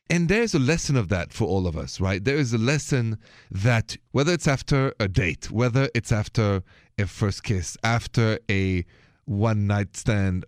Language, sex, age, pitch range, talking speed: English, male, 30-49, 100-135 Hz, 180 wpm